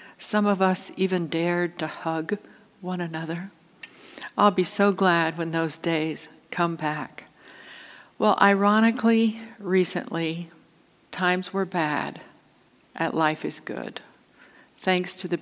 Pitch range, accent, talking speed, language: 165-205 Hz, American, 120 wpm, English